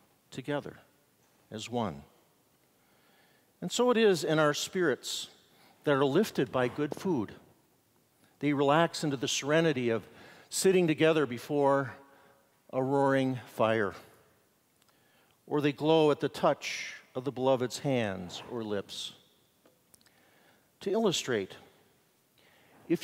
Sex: male